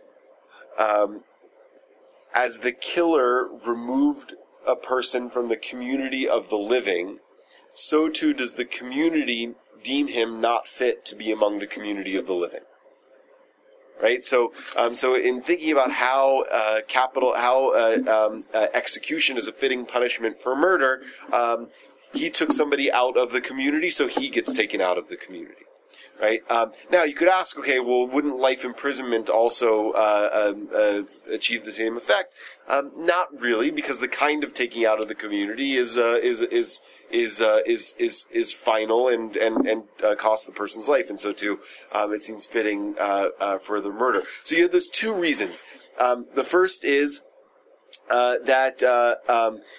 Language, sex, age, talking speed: English, male, 30-49, 170 wpm